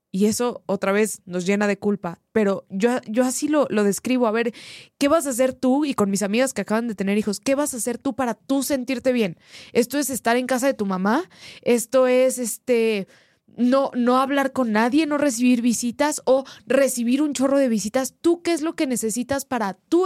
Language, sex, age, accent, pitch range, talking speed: Spanish, female, 20-39, Mexican, 220-275 Hz, 220 wpm